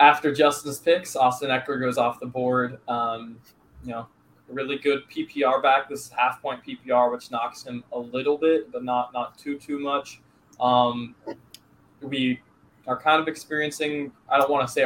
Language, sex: English, male